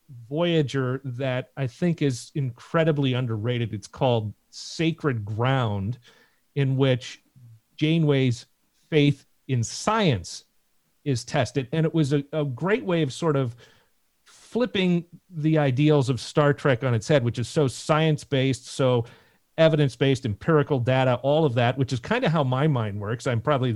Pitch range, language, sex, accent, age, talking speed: 115-150 Hz, English, male, American, 40-59, 150 wpm